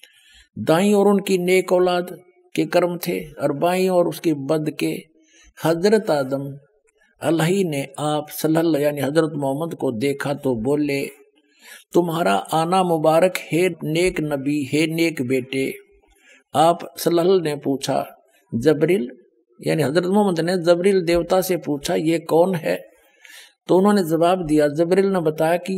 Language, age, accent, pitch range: Hindi, 60-79, native, 155-195 Hz